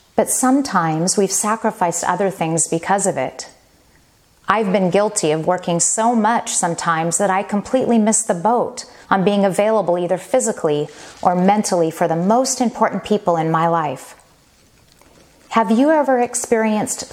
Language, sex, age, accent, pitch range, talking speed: English, female, 40-59, American, 170-225 Hz, 145 wpm